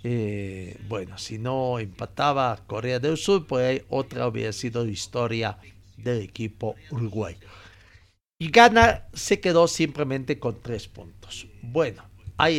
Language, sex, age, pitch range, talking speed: Spanish, male, 50-69, 105-145 Hz, 135 wpm